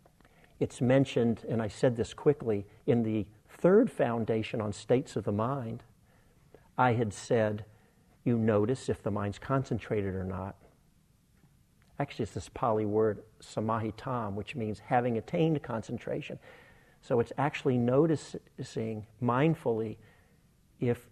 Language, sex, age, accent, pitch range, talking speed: English, male, 50-69, American, 110-140 Hz, 125 wpm